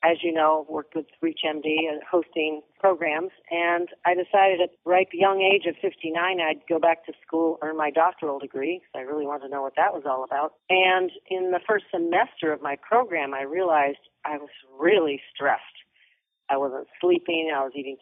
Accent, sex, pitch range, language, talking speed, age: American, female, 150-180 Hz, English, 195 wpm, 40-59